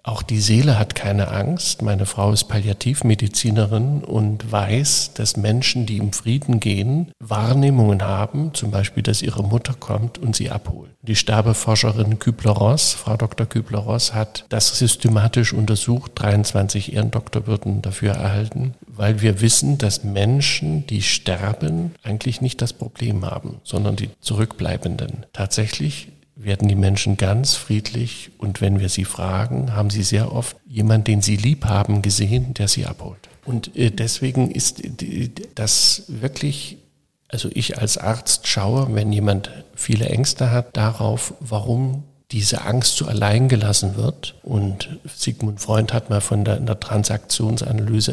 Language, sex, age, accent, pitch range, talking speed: German, male, 50-69, German, 105-125 Hz, 145 wpm